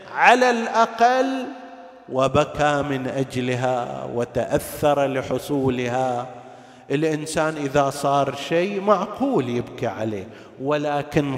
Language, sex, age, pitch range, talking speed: Arabic, male, 50-69, 130-185 Hz, 80 wpm